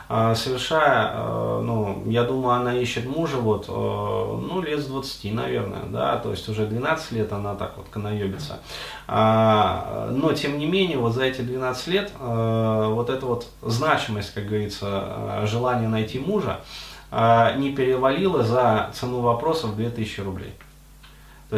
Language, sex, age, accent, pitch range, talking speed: Russian, male, 30-49, native, 105-150 Hz, 135 wpm